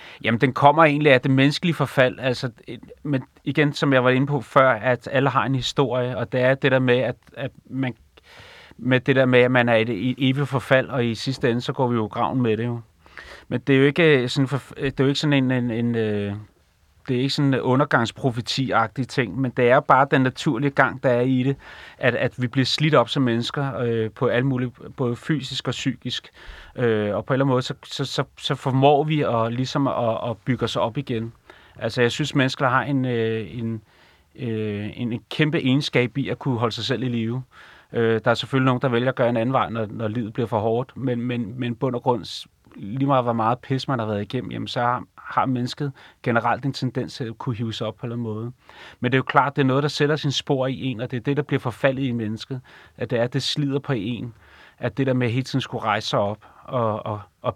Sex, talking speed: male, 245 wpm